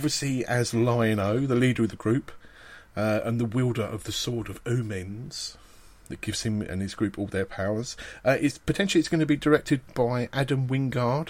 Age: 40-59